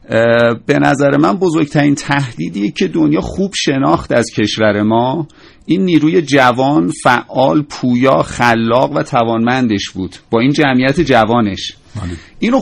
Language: Persian